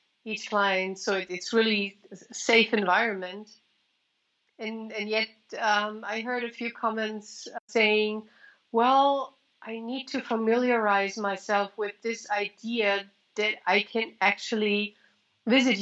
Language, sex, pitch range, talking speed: English, female, 200-240 Hz, 120 wpm